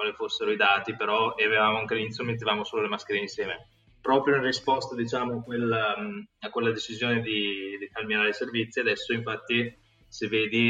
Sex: male